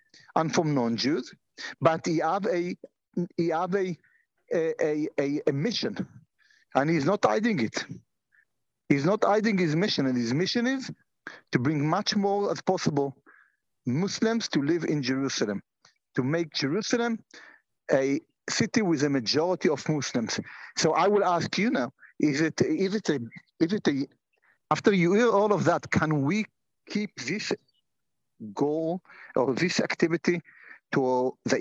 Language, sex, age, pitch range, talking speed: English, male, 50-69, 150-215 Hz, 150 wpm